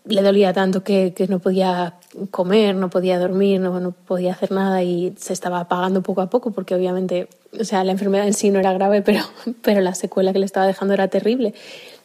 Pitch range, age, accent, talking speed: 190-210 Hz, 20-39, Spanish, 220 wpm